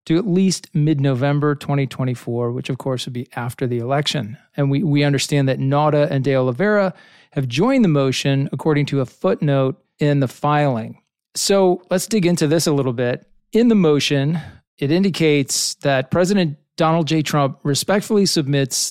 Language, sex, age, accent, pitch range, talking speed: English, male, 40-59, American, 135-165 Hz, 170 wpm